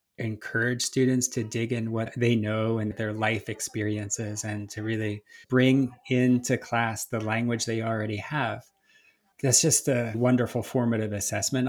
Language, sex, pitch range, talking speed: English, male, 110-125 Hz, 150 wpm